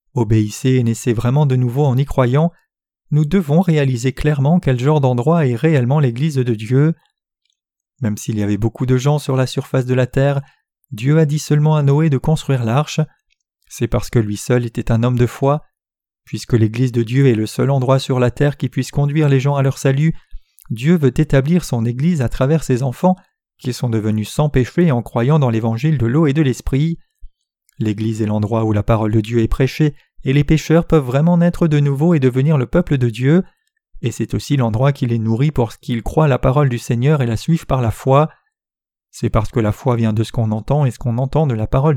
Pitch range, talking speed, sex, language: 120-150 Hz, 225 wpm, male, French